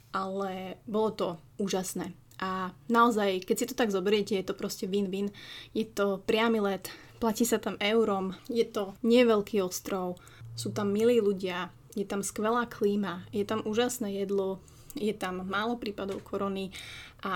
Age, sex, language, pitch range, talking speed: 20-39, female, Slovak, 190-220 Hz, 155 wpm